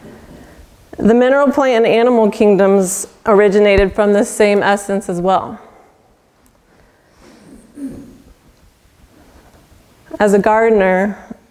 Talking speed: 85 wpm